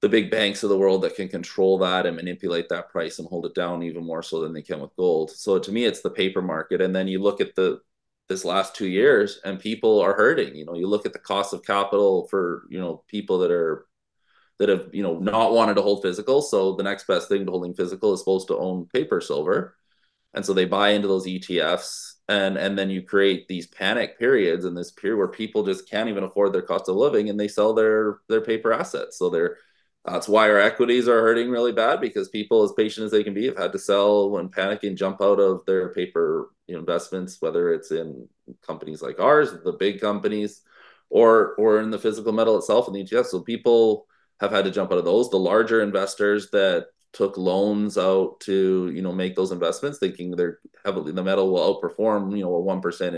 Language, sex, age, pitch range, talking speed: English, male, 20-39, 95-145 Hz, 230 wpm